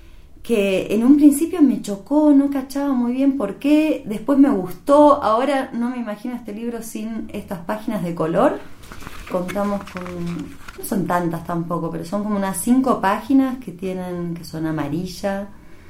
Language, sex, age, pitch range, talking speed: Spanish, female, 30-49, 150-215 Hz, 160 wpm